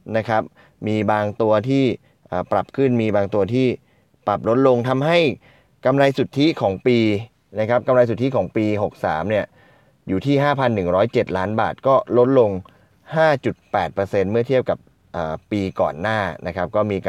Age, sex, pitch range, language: 20-39, male, 100-130 Hz, Thai